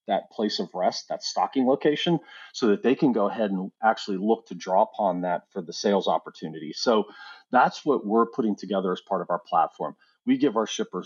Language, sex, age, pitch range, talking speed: English, male, 40-59, 100-140 Hz, 210 wpm